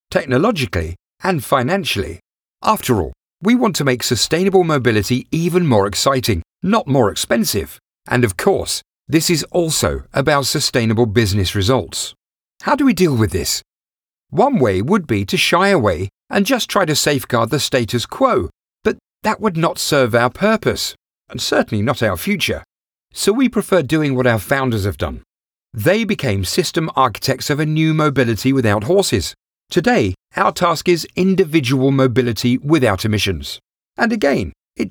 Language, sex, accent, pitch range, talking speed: English, male, British, 115-180 Hz, 155 wpm